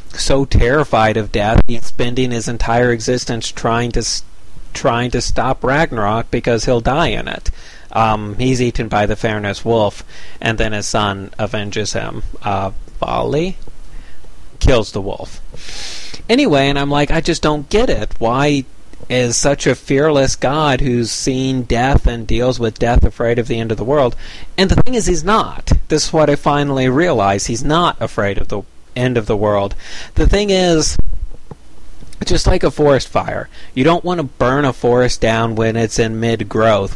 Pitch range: 110-145 Hz